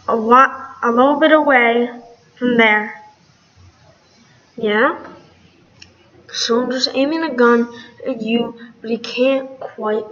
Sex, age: female, 10-29